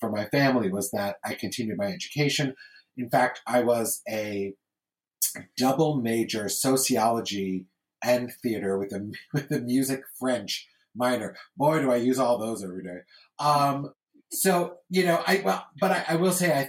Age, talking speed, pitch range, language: 30-49, 160 wpm, 110-140 Hz, English